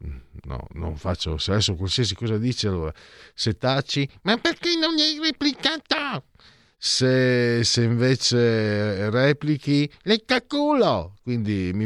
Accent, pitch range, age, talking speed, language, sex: native, 90-140 Hz, 50-69, 125 wpm, Italian, male